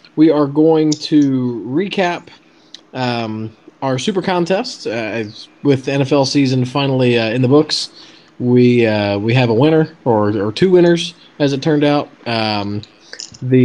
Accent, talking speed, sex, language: American, 155 wpm, male, English